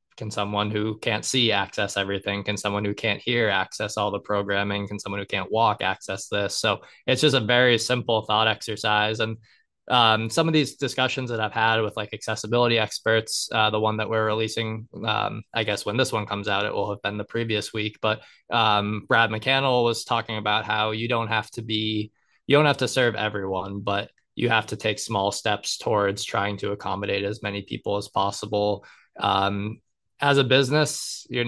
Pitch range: 105-115 Hz